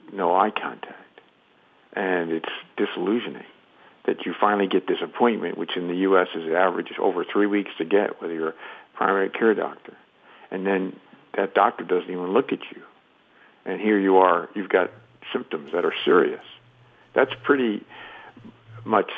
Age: 60-79